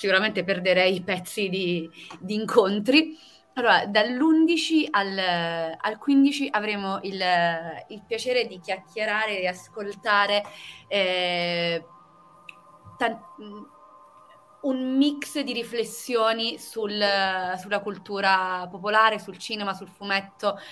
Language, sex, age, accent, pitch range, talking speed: Italian, female, 30-49, native, 175-210 Hz, 95 wpm